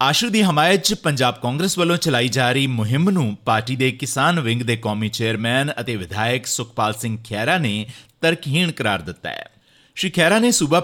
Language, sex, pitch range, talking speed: Punjabi, male, 115-165 Hz, 170 wpm